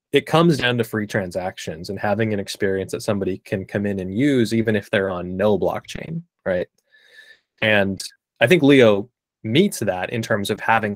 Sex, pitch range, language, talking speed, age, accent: male, 100-120 Hz, English, 185 wpm, 20-39, American